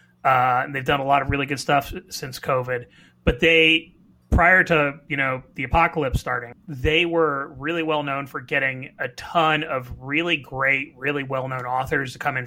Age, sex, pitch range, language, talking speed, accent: 30-49, male, 125-175 Hz, English, 185 wpm, American